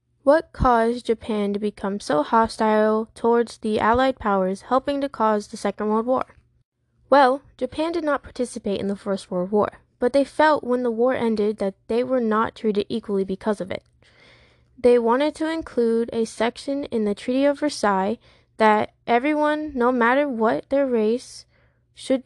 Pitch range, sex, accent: 210-260 Hz, female, American